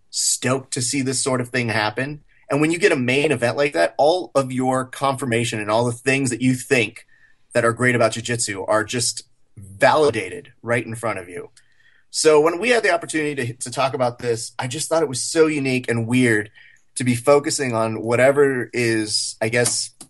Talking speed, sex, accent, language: 205 wpm, male, American, English